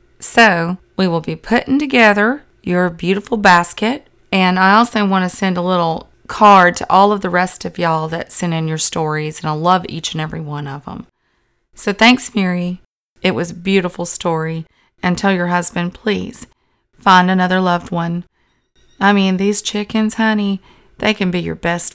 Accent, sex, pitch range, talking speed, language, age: American, female, 175-210 Hz, 180 wpm, English, 30-49